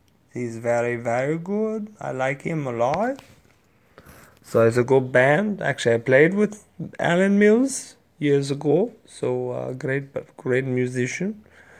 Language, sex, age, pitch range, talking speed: English, male, 20-39, 110-135 Hz, 140 wpm